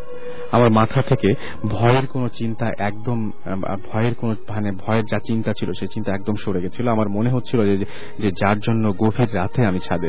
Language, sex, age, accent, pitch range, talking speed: English, male, 40-59, Indian, 100-120 Hz, 170 wpm